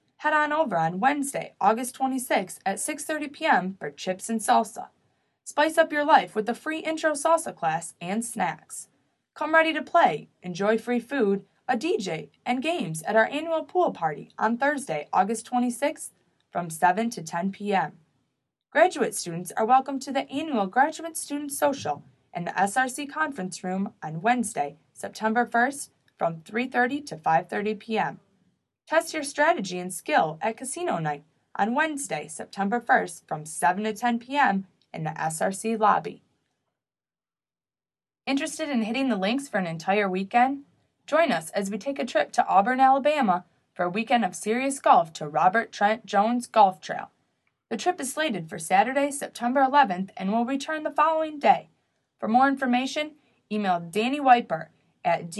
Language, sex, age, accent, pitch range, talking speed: English, female, 20-39, American, 190-285 Hz, 160 wpm